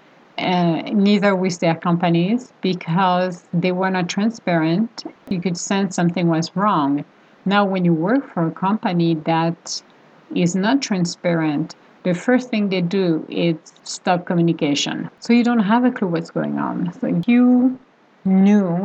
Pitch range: 170-205 Hz